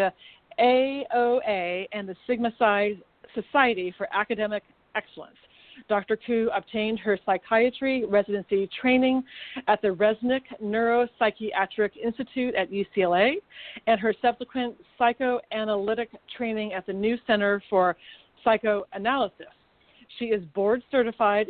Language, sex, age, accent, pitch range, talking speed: English, female, 40-59, American, 200-240 Hz, 105 wpm